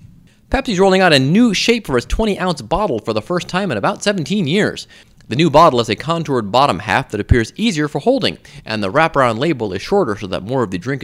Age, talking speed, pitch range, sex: 30-49, 235 wpm, 120-185 Hz, male